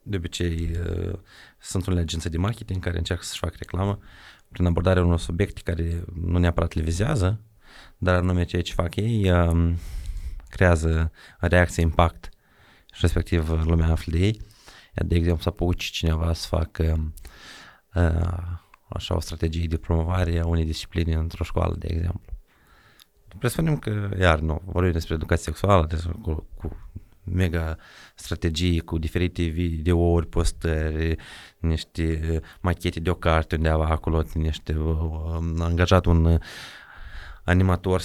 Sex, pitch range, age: male, 80-95 Hz, 30-49